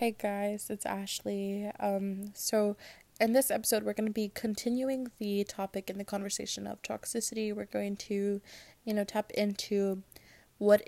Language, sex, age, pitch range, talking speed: English, female, 20-39, 190-220 Hz, 160 wpm